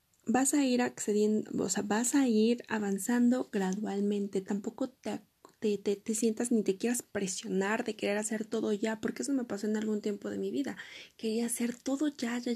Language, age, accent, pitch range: Spanish, 20-39, Mexican, 200-240 Hz